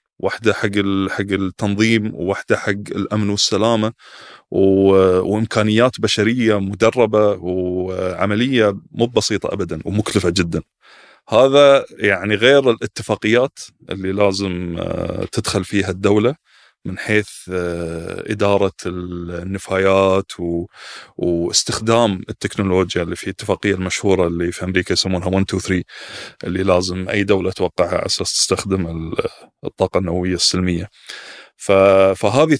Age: 20-39